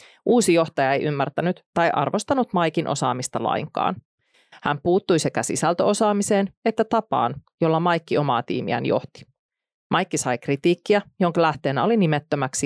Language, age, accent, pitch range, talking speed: Finnish, 30-49, native, 145-195 Hz, 130 wpm